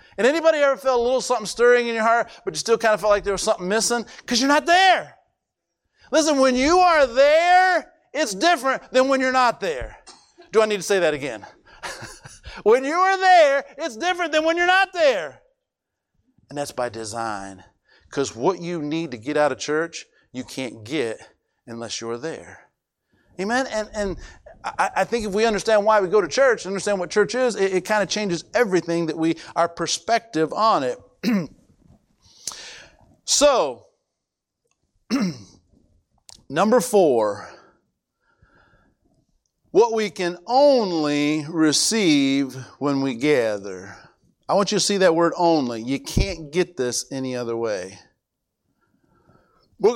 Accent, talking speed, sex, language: American, 155 wpm, male, English